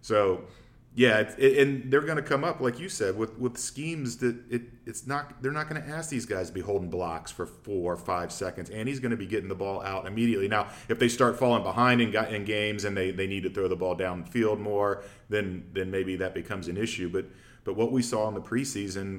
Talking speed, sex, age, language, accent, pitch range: 245 wpm, male, 40-59, English, American, 95-115 Hz